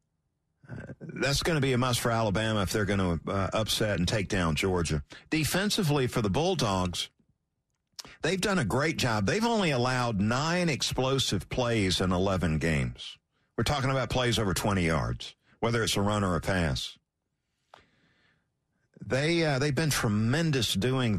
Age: 50-69